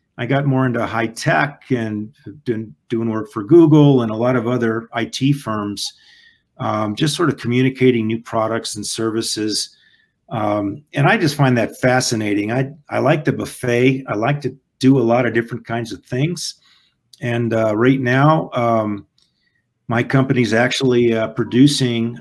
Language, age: English, 50-69